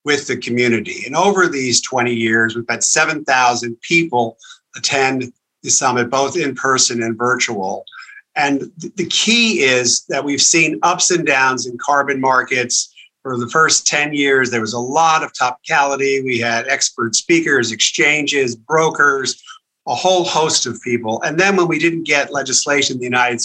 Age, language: 50-69, English